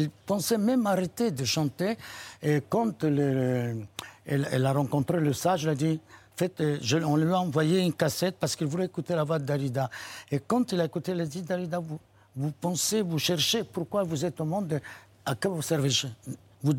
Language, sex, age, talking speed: French, male, 60-79, 205 wpm